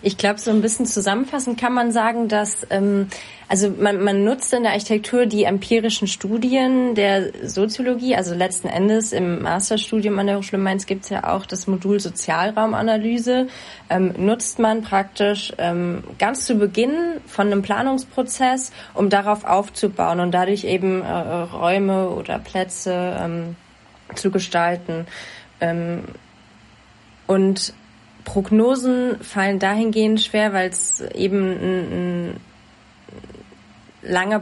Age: 20-39